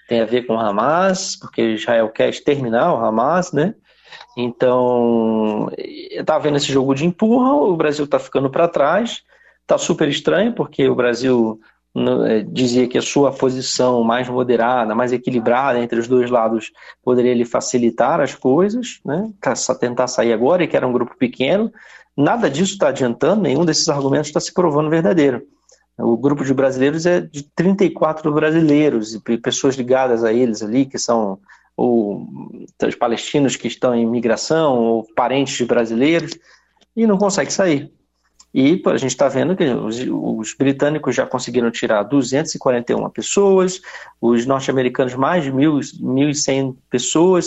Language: Portuguese